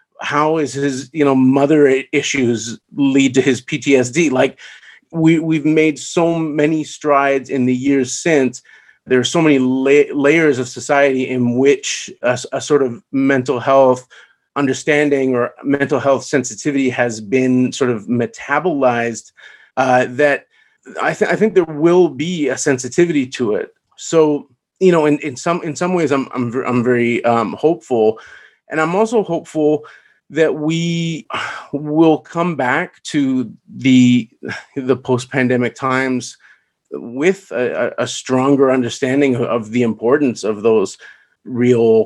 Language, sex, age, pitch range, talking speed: English, male, 30-49, 125-155 Hz, 145 wpm